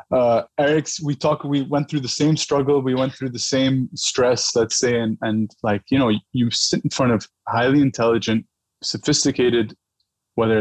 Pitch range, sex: 110-140 Hz, male